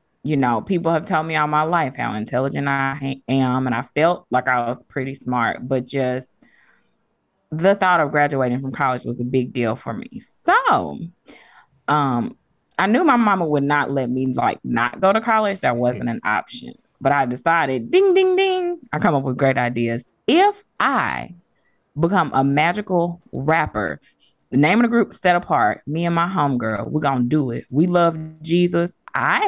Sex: female